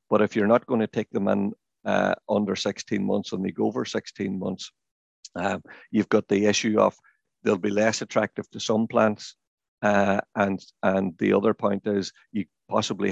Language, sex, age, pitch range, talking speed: English, male, 50-69, 100-110 Hz, 190 wpm